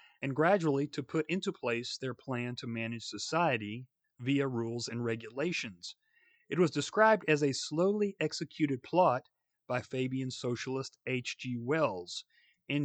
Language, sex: English, male